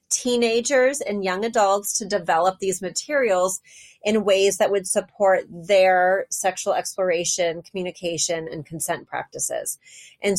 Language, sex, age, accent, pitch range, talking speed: English, female, 30-49, American, 175-210 Hz, 120 wpm